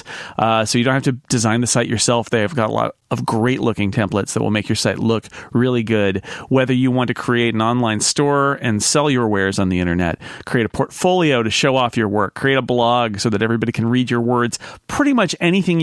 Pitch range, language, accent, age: 115-140 Hz, English, American, 40-59